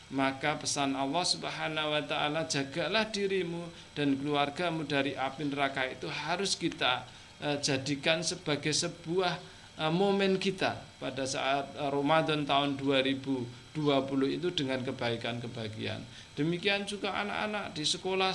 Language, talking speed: Indonesian, 115 wpm